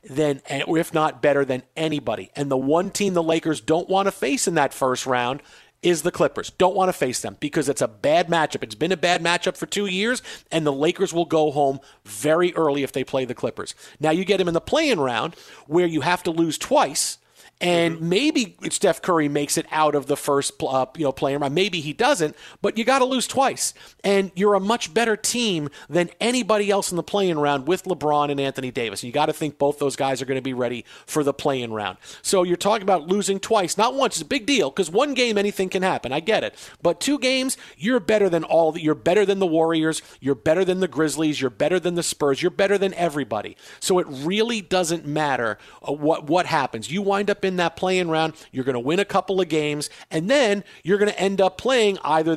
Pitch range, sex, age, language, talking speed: 145-195 Hz, male, 40-59, English, 235 wpm